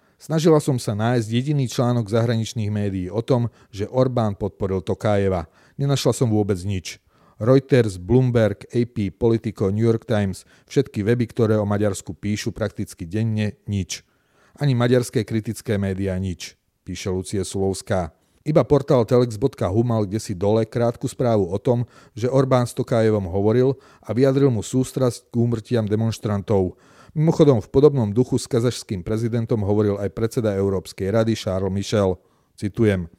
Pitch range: 100-125 Hz